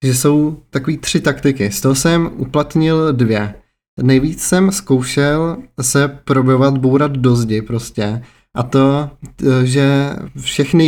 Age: 30-49